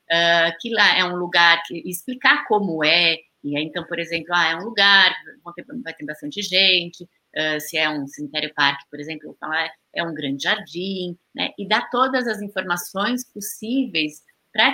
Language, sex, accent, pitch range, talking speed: Portuguese, female, Brazilian, 165-205 Hz, 200 wpm